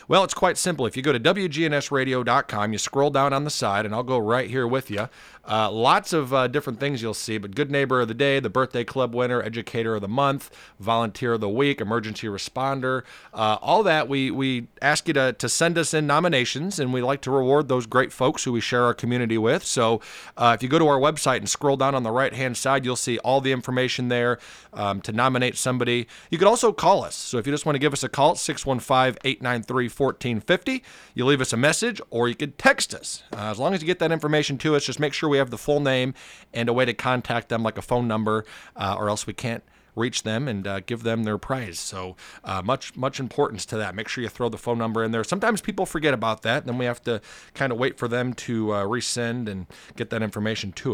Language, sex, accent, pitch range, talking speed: English, male, American, 115-140 Hz, 245 wpm